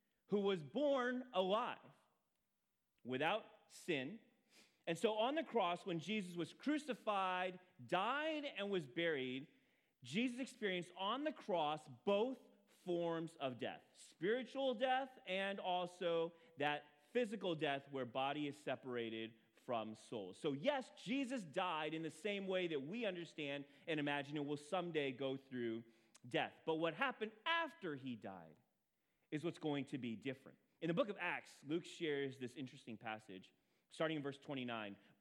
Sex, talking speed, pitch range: male, 145 wpm, 145-230 Hz